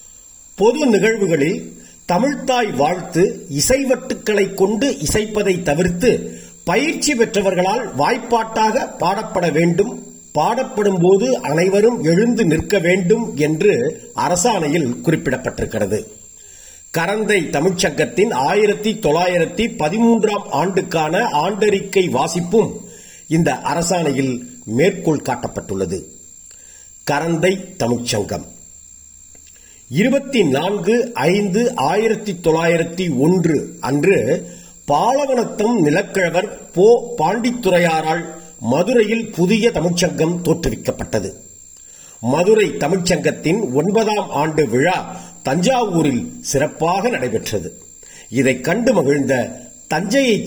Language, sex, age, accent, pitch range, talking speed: Tamil, male, 50-69, native, 145-215 Hz, 75 wpm